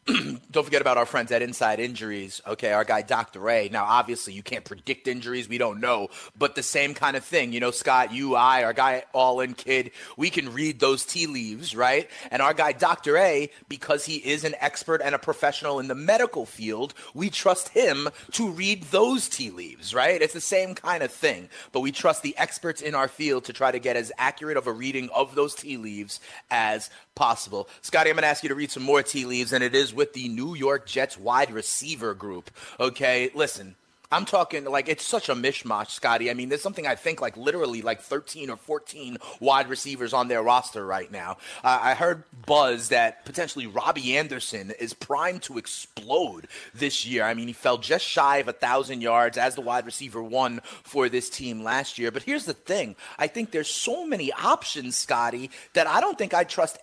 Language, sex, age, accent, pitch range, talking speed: English, male, 30-49, American, 120-150 Hz, 215 wpm